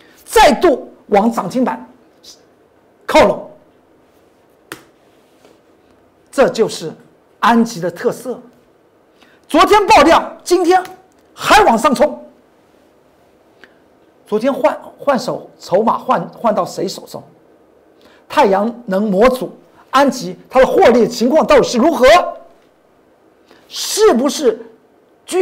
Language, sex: Chinese, male